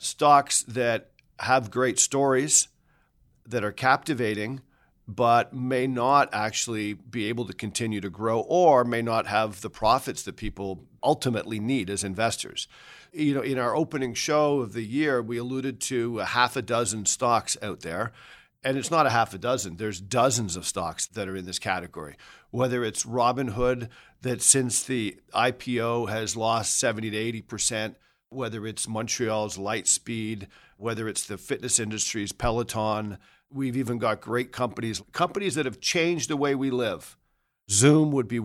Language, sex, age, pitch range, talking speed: English, male, 50-69, 110-135 Hz, 160 wpm